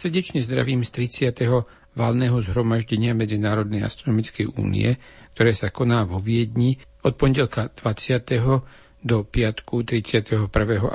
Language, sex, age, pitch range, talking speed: Slovak, male, 60-79, 105-125 Hz, 110 wpm